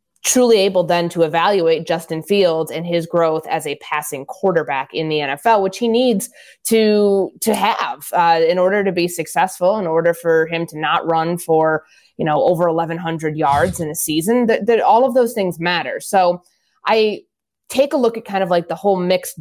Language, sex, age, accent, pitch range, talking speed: English, female, 20-39, American, 155-185 Hz, 200 wpm